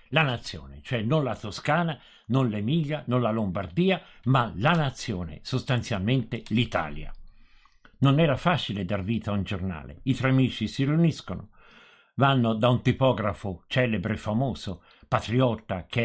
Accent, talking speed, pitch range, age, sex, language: native, 140 wpm, 105-160 Hz, 50-69, male, Italian